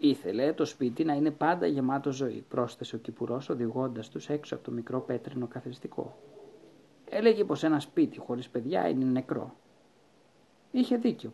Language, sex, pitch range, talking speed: Greek, male, 120-160 Hz, 155 wpm